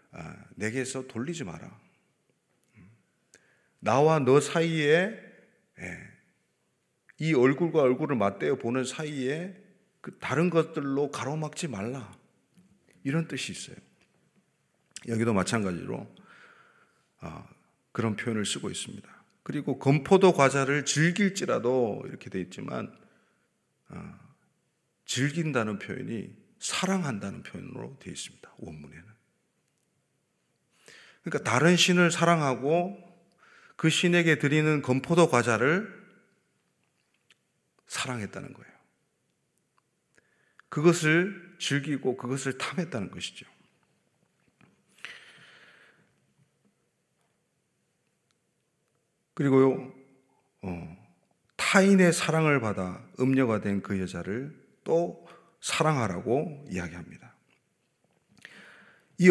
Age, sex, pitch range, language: 40-59, male, 130-170 Hz, Korean